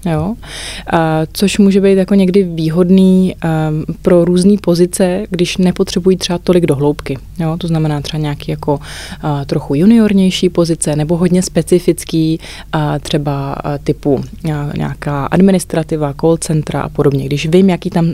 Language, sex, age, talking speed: Czech, female, 20-39, 130 wpm